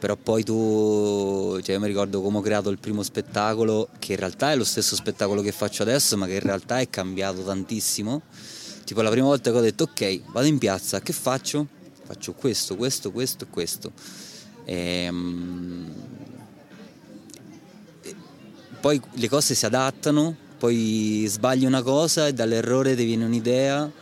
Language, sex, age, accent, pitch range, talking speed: Italian, male, 30-49, native, 105-125 Hz, 155 wpm